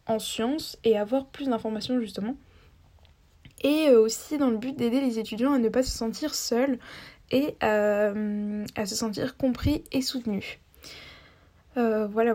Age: 10-29